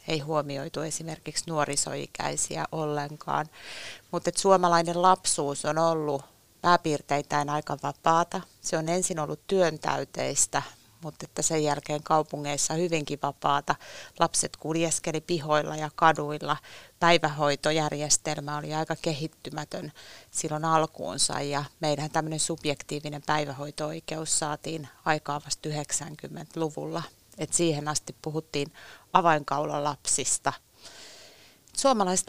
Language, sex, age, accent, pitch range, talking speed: Finnish, female, 30-49, native, 150-170 Hz, 95 wpm